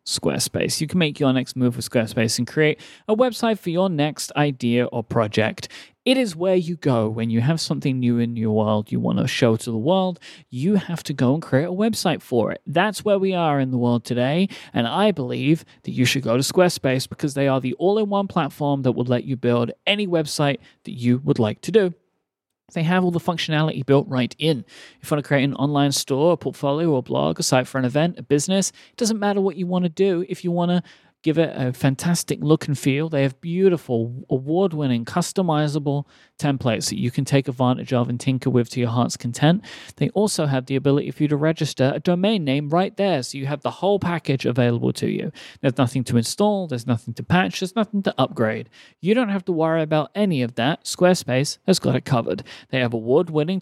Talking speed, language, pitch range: 225 wpm, English, 125-175 Hz